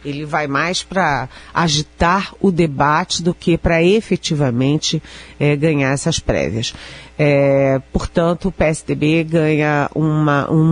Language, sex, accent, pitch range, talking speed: Portuguese, female, Brazilian, 145-175 Hz, 105 wpm